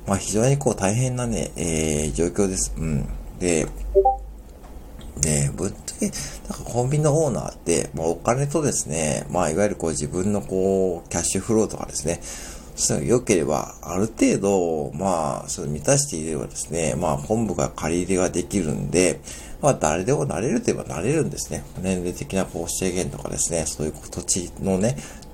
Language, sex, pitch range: Japanese, male, 70-105 Hz